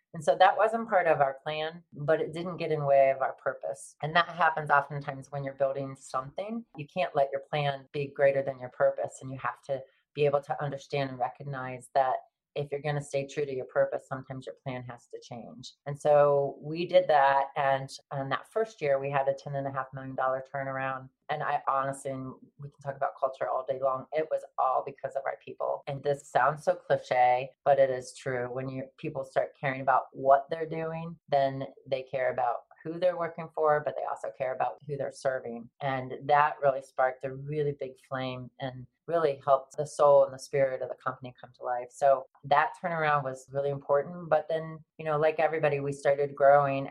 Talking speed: 215 wpm